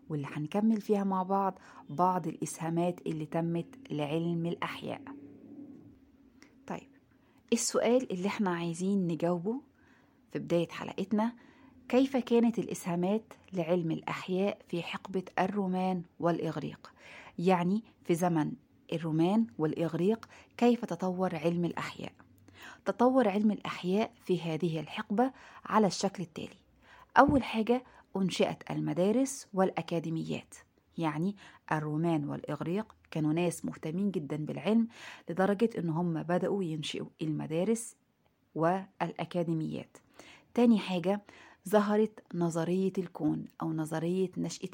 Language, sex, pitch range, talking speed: Arabic, female, 165-215 Hz, 100 wpm